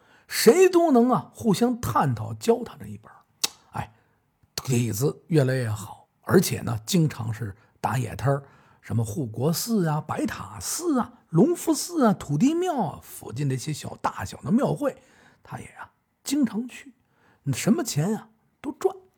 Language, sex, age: Chinese, male, 50-69